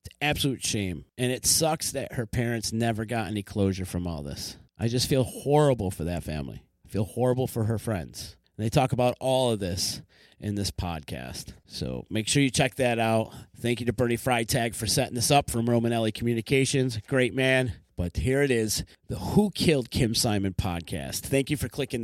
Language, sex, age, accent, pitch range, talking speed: English, male, 30-49, American, 115-185 Hz, 200 wpm